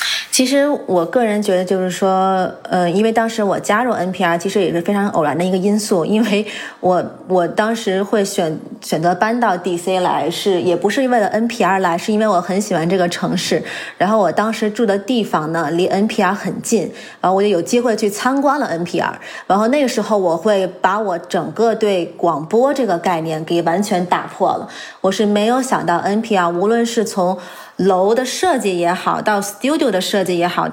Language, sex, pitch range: Chinese, female, 180-225 Hz